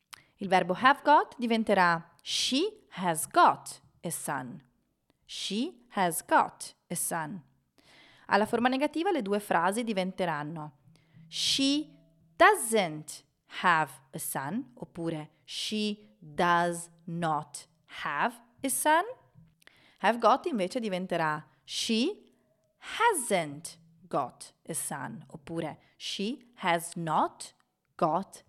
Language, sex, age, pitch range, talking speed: Italian, female, 30-49, 165-235 Hz, 100 wpm